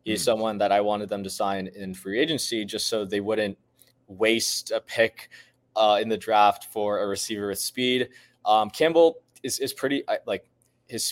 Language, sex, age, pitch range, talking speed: English, male, 20-39, 95-110 Hz, 185 wpm